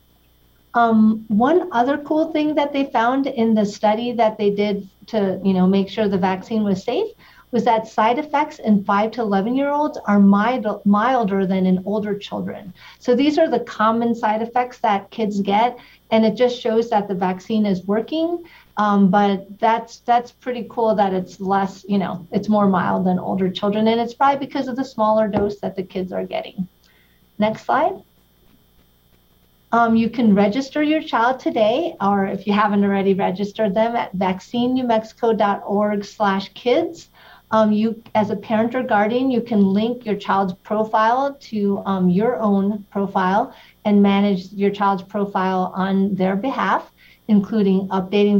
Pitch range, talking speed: 195-235 Hz, 170 wpm